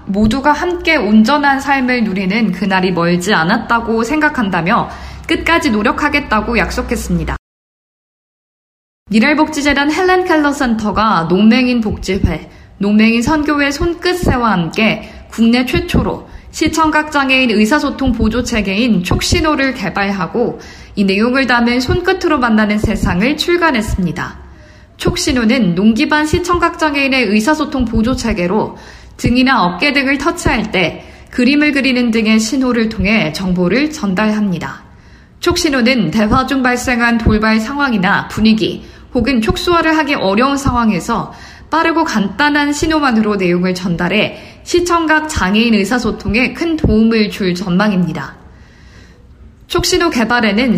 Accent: native